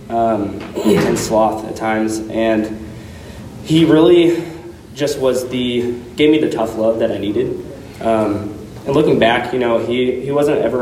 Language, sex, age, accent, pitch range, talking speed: English, male, 20-39, American, 110-120 Hz, 160 wpm